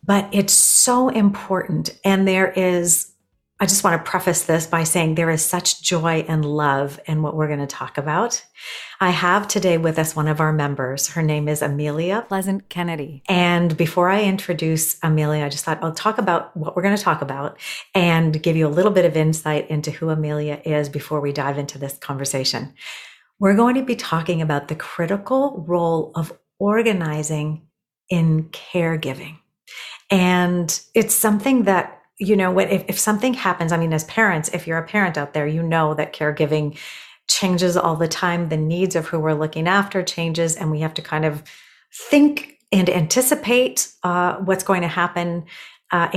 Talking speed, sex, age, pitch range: 185 wpm, female, 40-59, 160-200 Hz